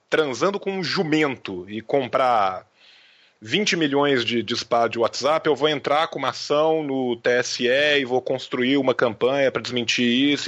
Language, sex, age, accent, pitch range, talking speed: Portuguese, male, 20-39, Brazilian, 120-195 Hz, 160 wpm